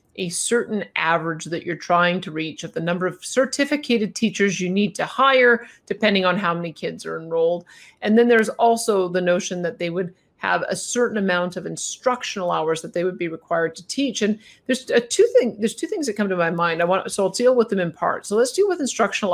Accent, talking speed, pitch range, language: American, 235 wpm, 175-250 Hz, English